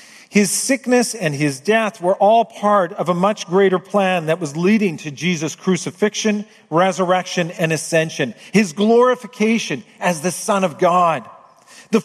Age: 40-59